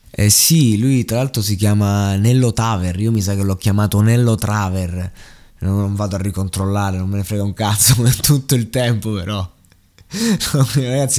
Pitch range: 100-125 Hz